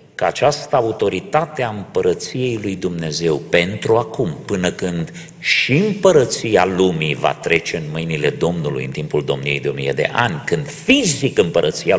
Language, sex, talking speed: Romanian, male, 145 wpm